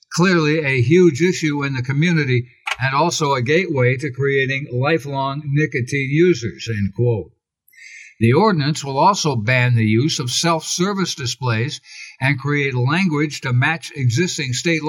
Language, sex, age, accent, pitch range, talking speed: English, male, 60-79, American, 130-165 Hz, 140 wpm